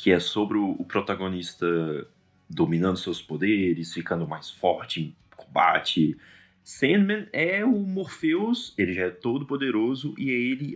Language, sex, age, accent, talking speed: Portuguese, male, 30-49, Brazilian, 140 wpm